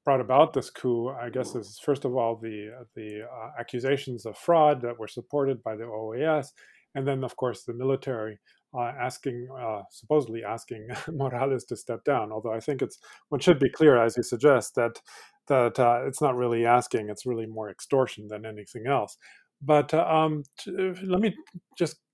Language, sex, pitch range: English, male, 120-145 Hz